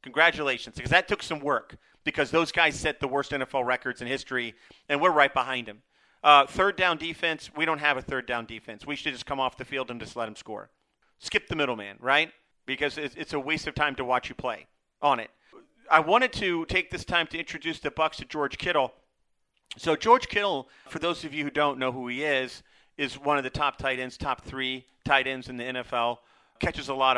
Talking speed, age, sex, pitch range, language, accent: 225 wpm, 40-59, male, 130-155 Hz, English, American